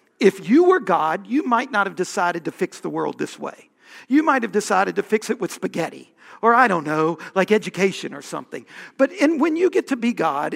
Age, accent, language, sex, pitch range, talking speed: 50-69, American, English, male, 195-265 Hz, 220 wpm